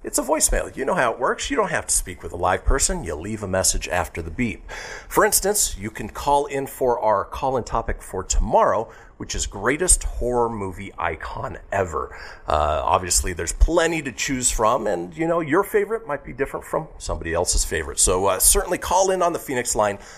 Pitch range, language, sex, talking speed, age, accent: 100-150 Hz, English, male, 215 wpm, 40-59, American